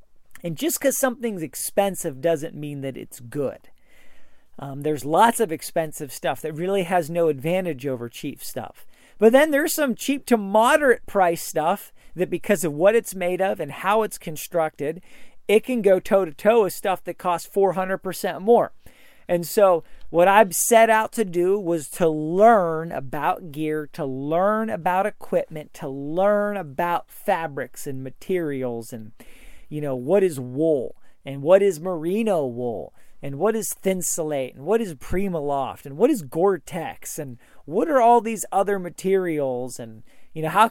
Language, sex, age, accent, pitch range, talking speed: English, male, 40-59, American, 155-205 Hz, 165 wpm